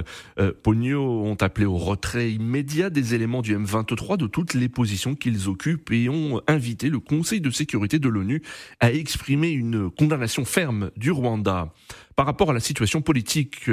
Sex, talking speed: male, 165 wpm